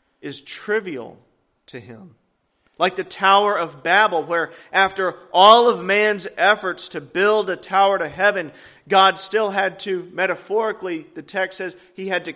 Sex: male